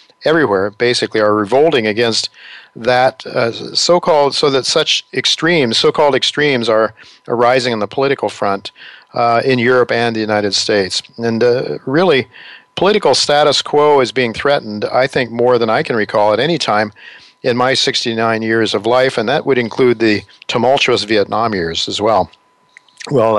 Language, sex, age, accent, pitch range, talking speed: English, male, 50-69, American, 110-125 Hz, 160 wpm